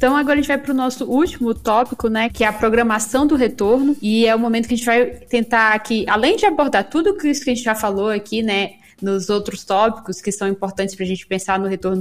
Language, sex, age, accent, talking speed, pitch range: Portuguese, female, 20-39, Brazilian, 255 wpm, 200-250 Hz